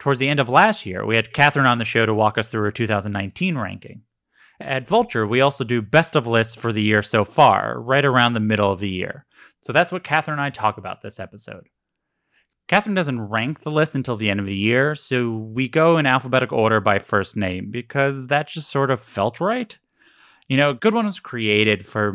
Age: 30-49